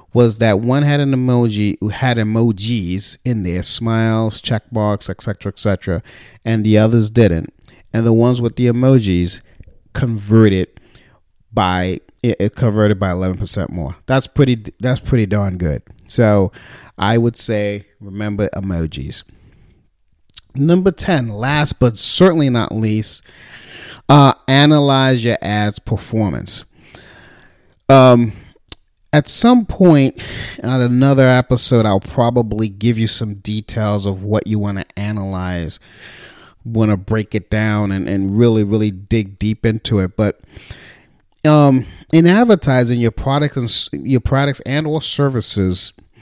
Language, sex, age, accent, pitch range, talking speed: English, male, 40-59, American, 100-125 Hz, 135 wpm